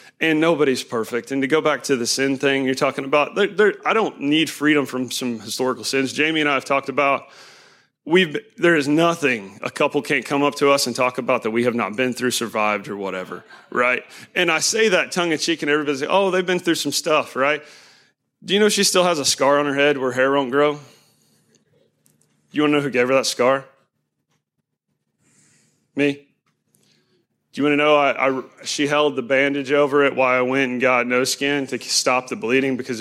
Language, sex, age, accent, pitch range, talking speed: English, male, 30-49, American, 125-145 Hz, 220 wpm